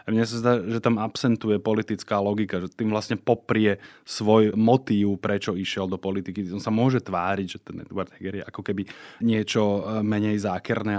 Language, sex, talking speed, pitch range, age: Slovak, male, 175 wpm, 105-115 Hz, 20-39